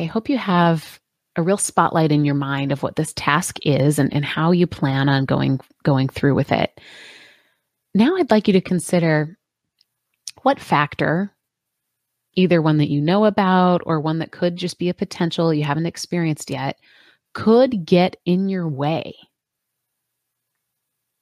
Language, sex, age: English, female, 30-49